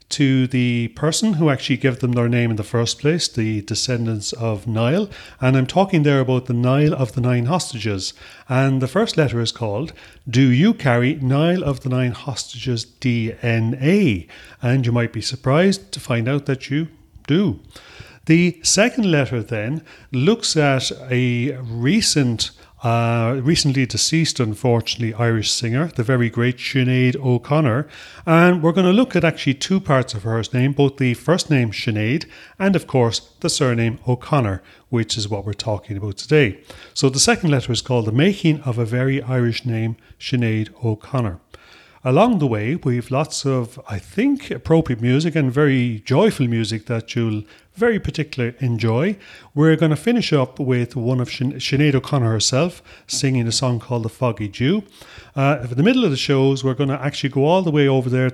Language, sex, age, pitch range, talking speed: English, male, 40-59, 120-150 Hz, 180 wpm